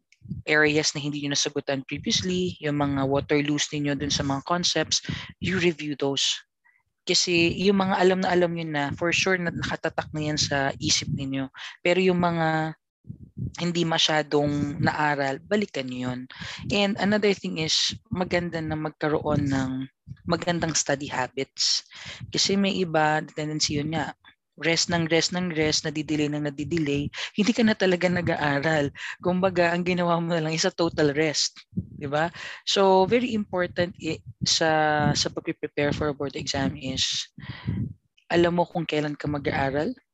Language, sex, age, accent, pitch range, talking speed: Filipino, female, 20-39, native, 145-175 Hz, 155 wpm